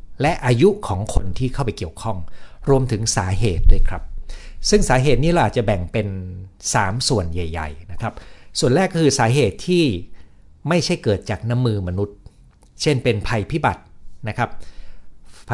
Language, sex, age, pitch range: Thai, male, 60-79, 90-125 Hz